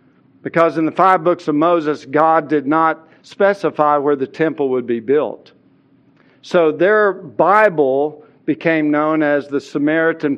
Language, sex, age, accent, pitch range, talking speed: English, male, 50-69, American, 145-180 Hz, 145 wpm